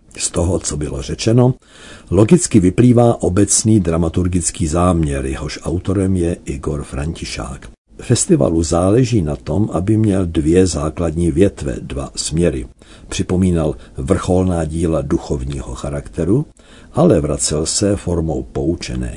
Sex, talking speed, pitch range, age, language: male, 115 wpm, 75-100 Hz, 50-69, Czech